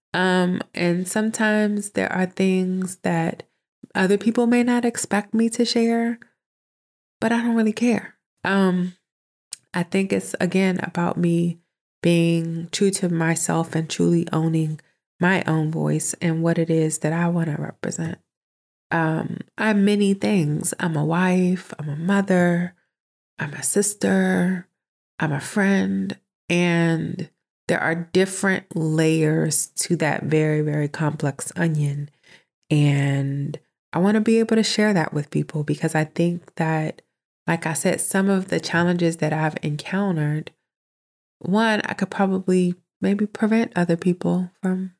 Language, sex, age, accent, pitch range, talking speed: English, female, 20-39, American, 160-195 Hz, 145 wpm